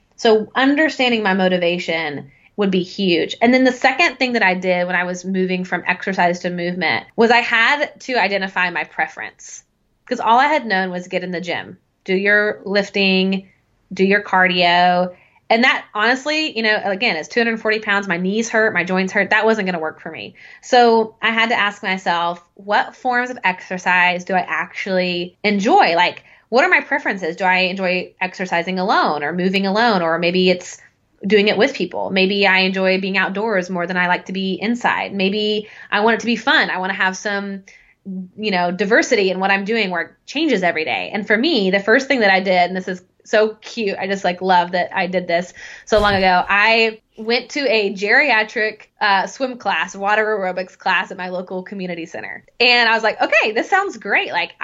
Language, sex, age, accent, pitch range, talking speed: English, female, 20-39, American, 185-220 Hz, 205 wpm